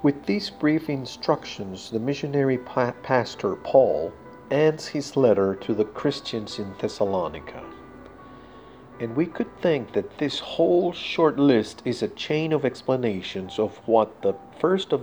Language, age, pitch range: Spanish, 50-69, 110-140 Hz